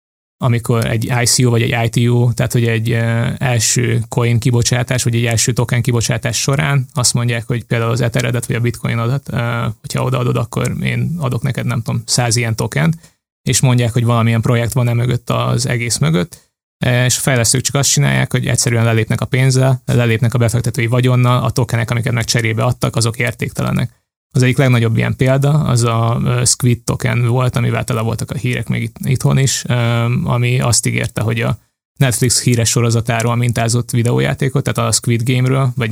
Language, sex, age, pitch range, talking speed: Hungarian, male, 20-39, 115-125 Hz, 175 wpm